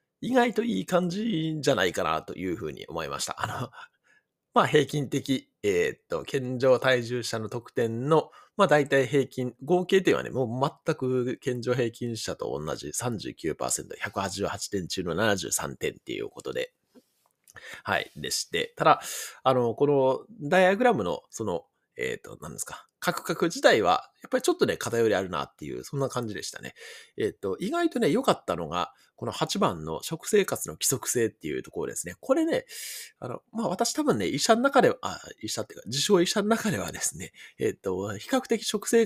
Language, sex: Japanese, male